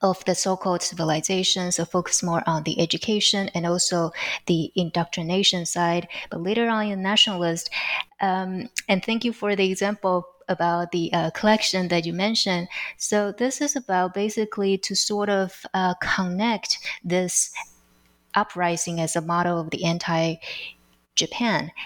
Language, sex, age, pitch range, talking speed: English, female, 20-39, 170-205 Hz, 145 wpm